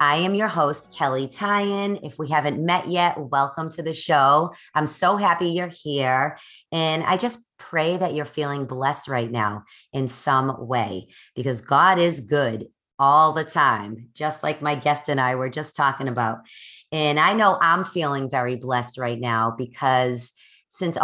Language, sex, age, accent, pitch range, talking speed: English, female, 30-49, American, 130-160 Hz, 175 wpm